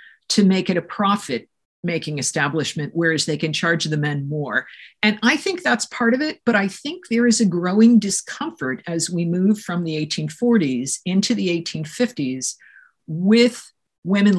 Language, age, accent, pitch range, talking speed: English, 50-69, American, 160-205 Hz, 165 wpm